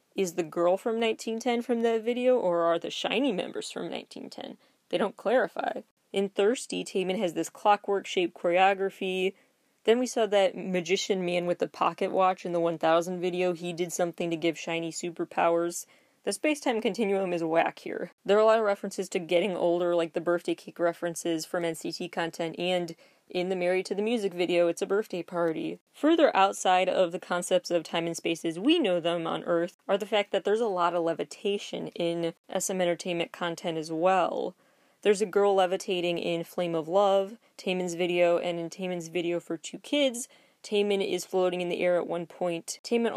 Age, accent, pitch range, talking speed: 20-39, American, 170-205 Hz, 190 wpm